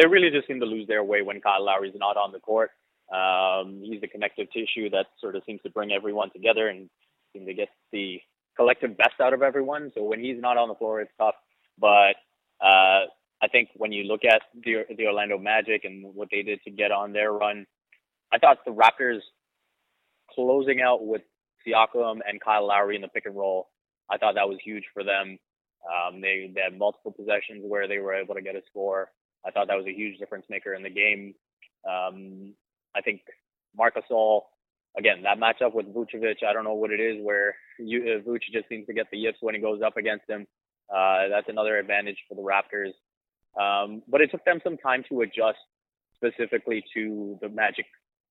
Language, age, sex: English, 20-39, male